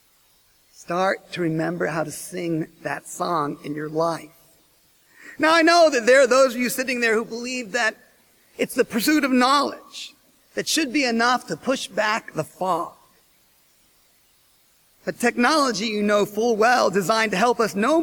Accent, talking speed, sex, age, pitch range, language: American, 165 wpm, male, 40-59, 225-290 Hz, English